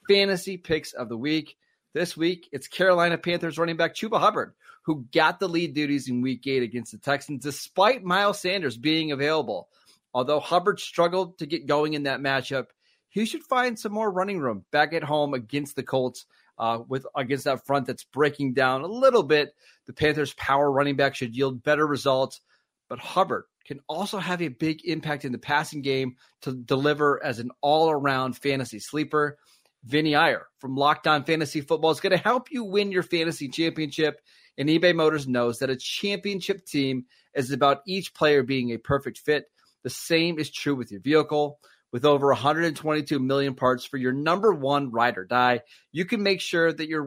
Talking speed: 185 wpm